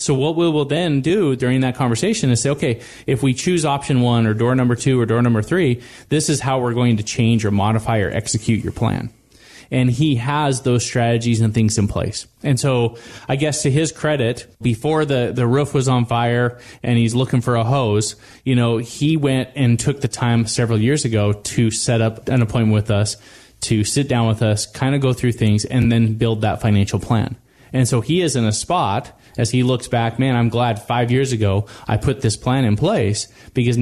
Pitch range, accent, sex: 110-130 Hz, American, male